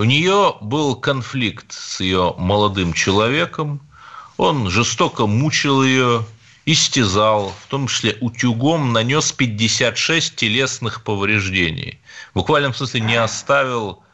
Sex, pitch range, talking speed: male, 105-135 Hz, 110 wpm